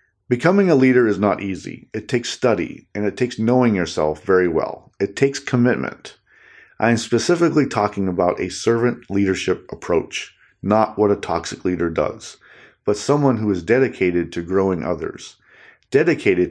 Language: English